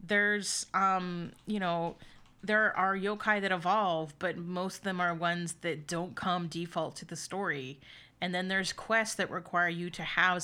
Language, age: English, 30-49